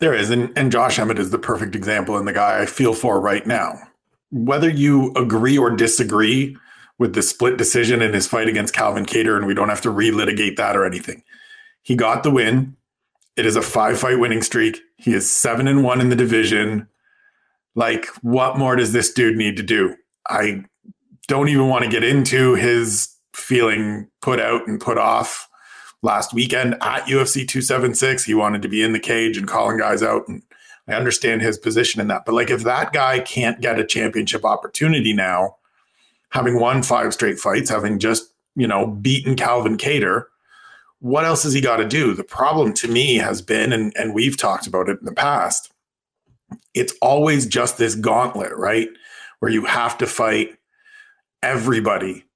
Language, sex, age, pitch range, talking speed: English, male, 40-59, 110-140 Hz, 185 wpm